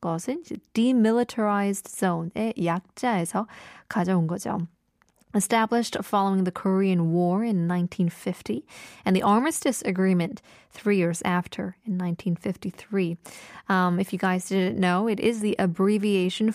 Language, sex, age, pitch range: Korean, female, 20-39, 185-245 Hz